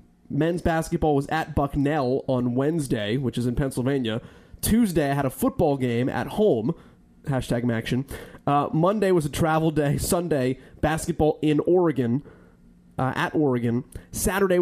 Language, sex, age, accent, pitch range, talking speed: English, male, 20-39, American, 120-155 Hz, 140 wpm